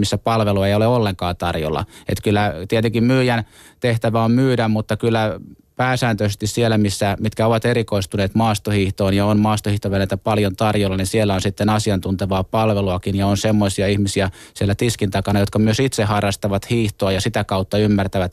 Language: Finnish